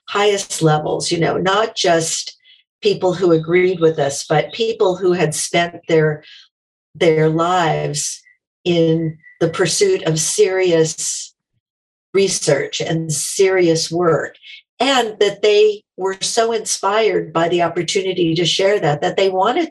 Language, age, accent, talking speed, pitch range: English, 50-69, American, 130 wpm, 160-205 Hz